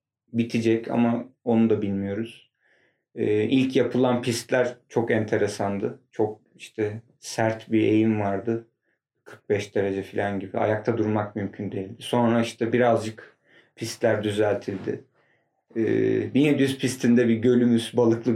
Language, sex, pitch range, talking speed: Turkish, male, 110-130 Hz, 120 wpm